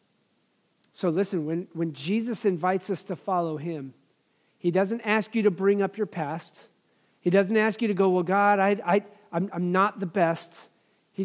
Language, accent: English, American